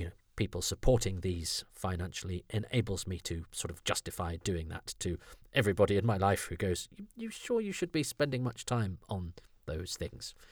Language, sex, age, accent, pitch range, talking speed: English, male, 40-59, British, 90-115 Hz, 170 wpm